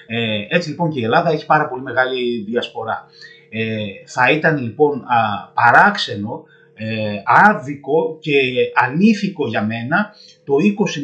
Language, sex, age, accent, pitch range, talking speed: Greek, male, 30-49, native, 125-180 Hz, 115 wpm